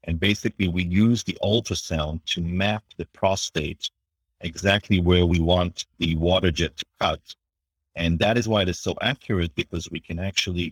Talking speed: 175 wpm